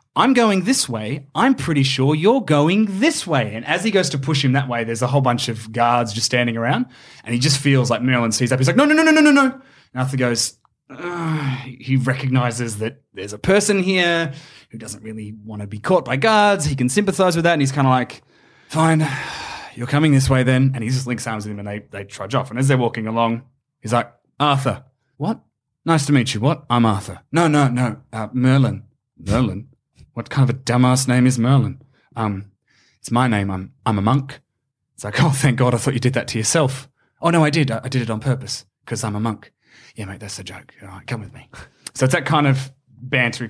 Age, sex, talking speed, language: 20-39, male, 240 wpm, English